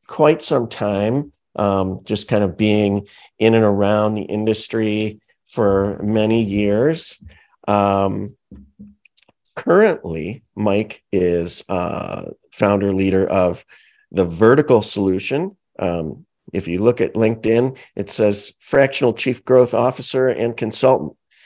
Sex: male